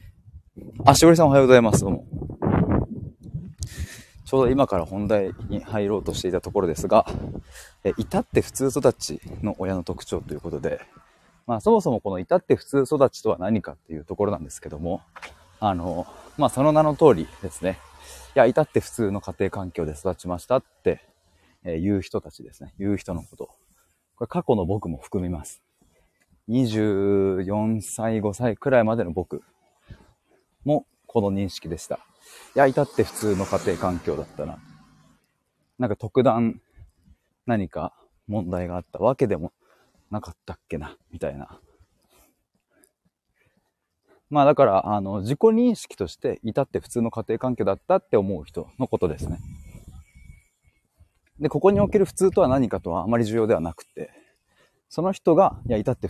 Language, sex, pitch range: Japanese, male, 90-125 Hz